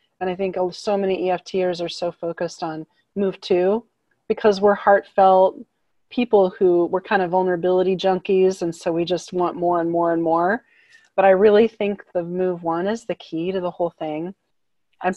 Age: 30-49